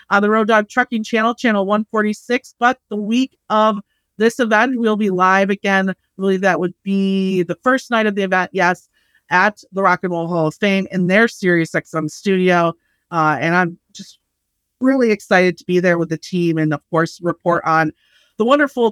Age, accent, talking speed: 30-49, American, 195 wpm